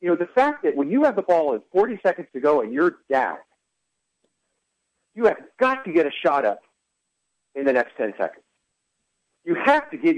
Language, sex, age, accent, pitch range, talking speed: English, male, 50-69, American, 140-220 Hz, 205 wpm